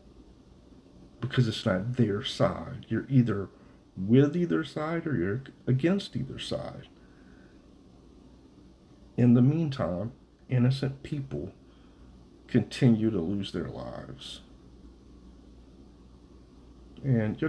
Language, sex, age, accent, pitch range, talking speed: English, male, 50-69, American, 80-125 Hz, 95 wpm